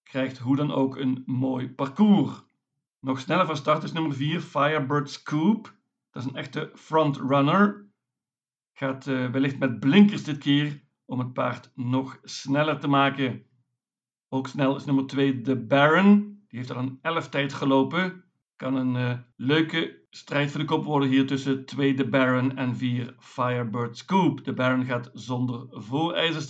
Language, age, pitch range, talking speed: Dutch, 50-69, 130-155 Hz, 165 wpm